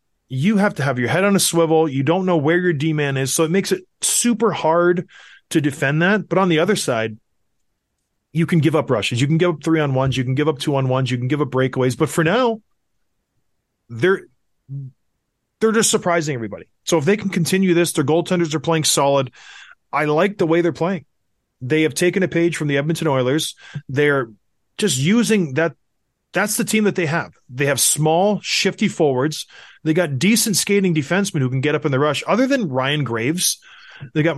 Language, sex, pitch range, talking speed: English, male, 140-180 Hz, 205 wpm